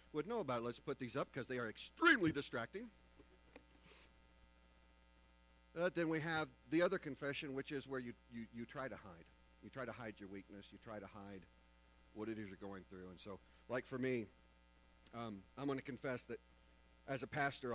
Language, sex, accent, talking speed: English, male, American, 195 wpm